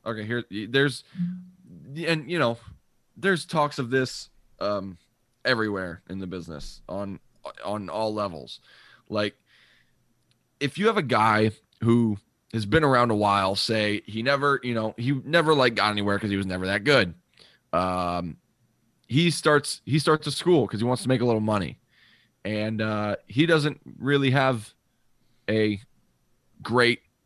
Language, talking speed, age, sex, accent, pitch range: English, 155 wpm, 20-39, male, American, 105-145 Hz